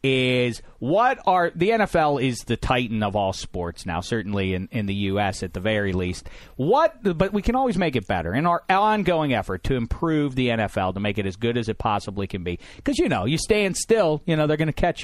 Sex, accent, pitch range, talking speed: male, American, 105-150 Hz, 245 wpm